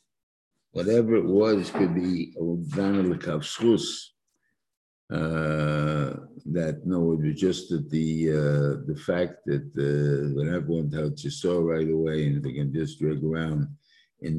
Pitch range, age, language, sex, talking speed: 75-90 Hz, 50-69, English, male, 140 wpm